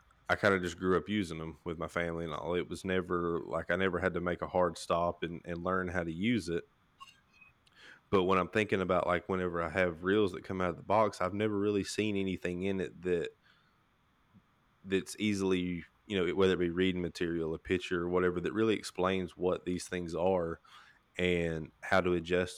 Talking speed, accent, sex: 215 wpm, American, male